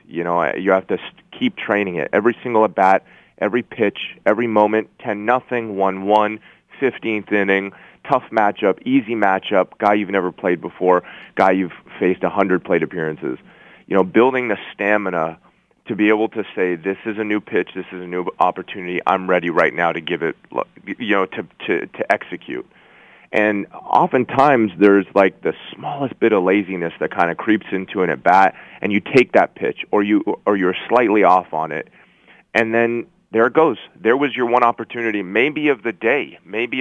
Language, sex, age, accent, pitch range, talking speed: English, male, 30-49, American, 90-110 Hz, 185 wpm